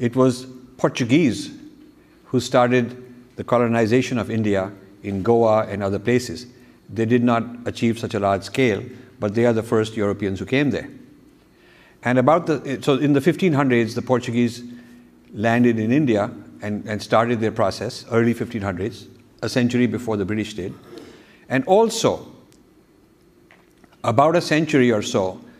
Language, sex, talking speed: English, male, 150 wpm